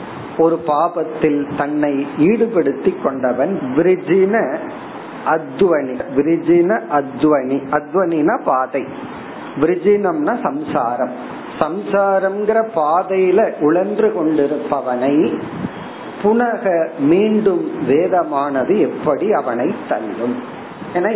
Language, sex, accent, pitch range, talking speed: Tamil, male, native, 145-195 Hz, 35 wpm